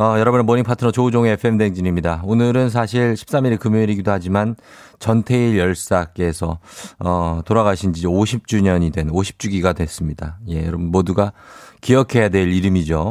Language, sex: Korean, male